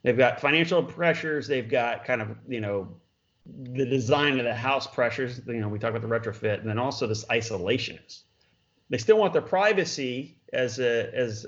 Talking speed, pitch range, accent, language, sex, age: 190 wpm, 110-130 Hz, American, English, male, 30-49